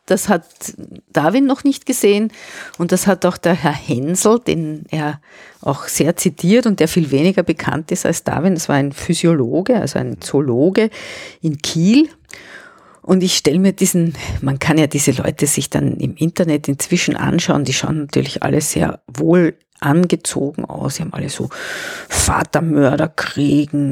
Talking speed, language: 160 wpm, German